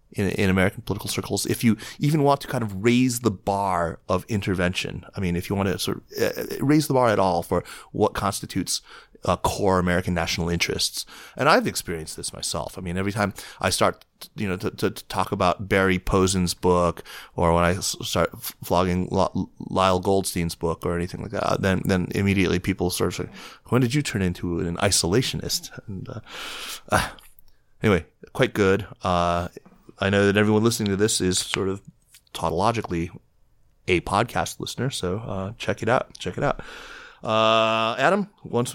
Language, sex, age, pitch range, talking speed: English, male, 30-49, 90-115 Hz, 185 wpm